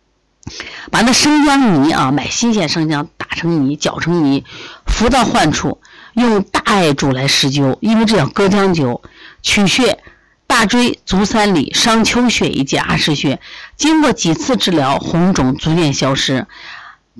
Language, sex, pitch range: Chinese, female, 145-220 Hz